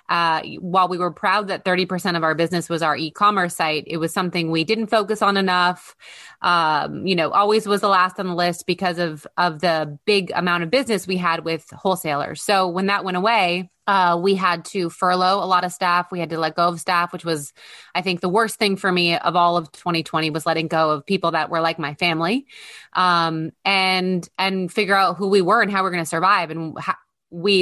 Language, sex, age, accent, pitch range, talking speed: English, female, 20-39, American, 170-195 Hz, 230 wpm